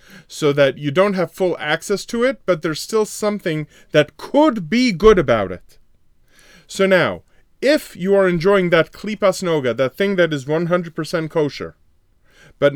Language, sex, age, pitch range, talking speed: English, male, 30-49, 145-200 Hz, 160 wpm